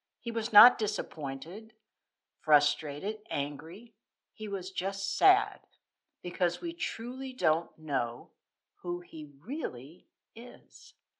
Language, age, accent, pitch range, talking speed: English, 60-79, American, 165-240 Hz, 100 wpm